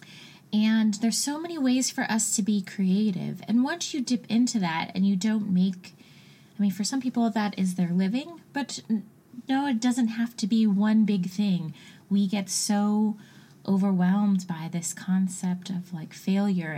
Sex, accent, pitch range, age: female, American, 180-230 Hz, 20-39